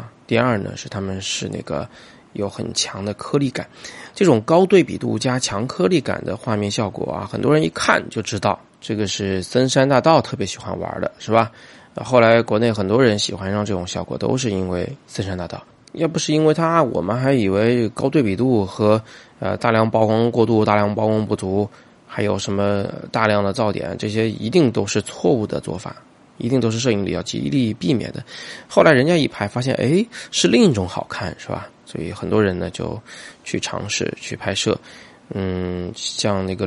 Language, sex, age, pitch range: Chinese, male, 20-39, 100-125 Hz